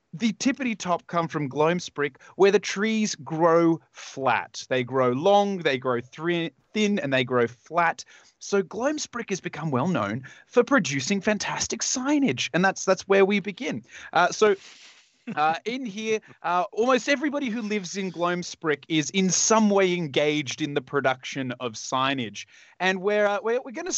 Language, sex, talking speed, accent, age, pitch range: English, male, 165 wpm, Australian, 30-49, 145-210 Hz